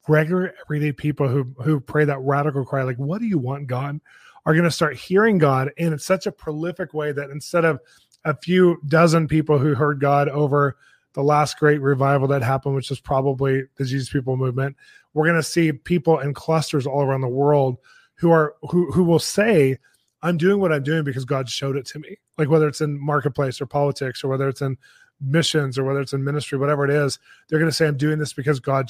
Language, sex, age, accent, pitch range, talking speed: English, male, 20-39, American, 140-160 Hz, 220 wpm